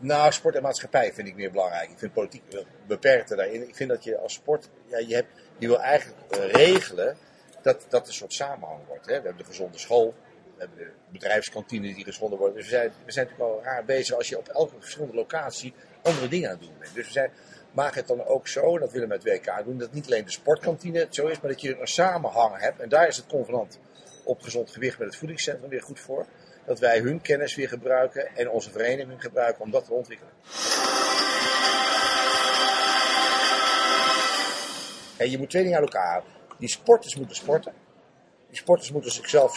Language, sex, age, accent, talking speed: Dutch, male, 50-69, Dutch, 205 wpm